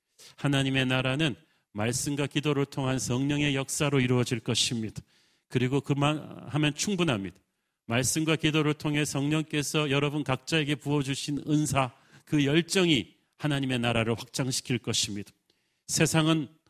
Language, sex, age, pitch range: Korean, male, 40-59, 125-155 Hz